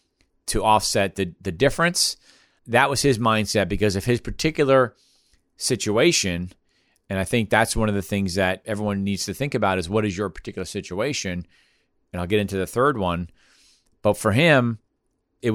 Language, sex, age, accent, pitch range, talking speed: English, male, 40-59, American, 95-115 Hz, 175 wpm